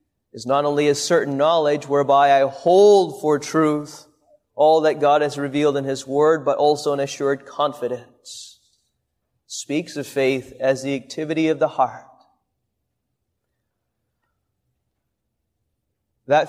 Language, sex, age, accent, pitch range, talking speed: English, male, 30-49, American, 145-180 Hz, 125 wpm